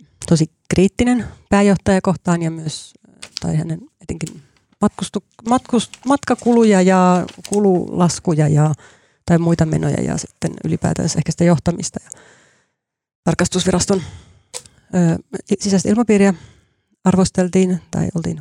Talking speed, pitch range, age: 100 wpm, 165-195 Hz, 30-49